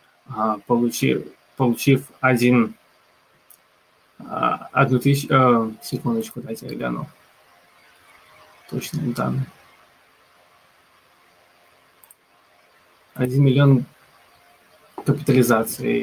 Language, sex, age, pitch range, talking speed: Russian, male, 20-39, 90-130 Hz, 65 wpm